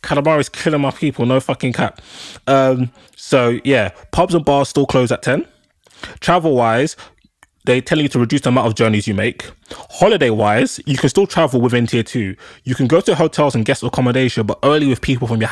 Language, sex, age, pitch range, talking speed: English, male, 20-39, 110-135 Hz, 210 wpm